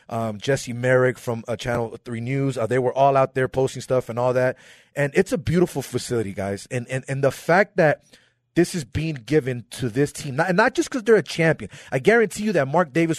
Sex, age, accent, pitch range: male, 30-49, American, 120-165 Hz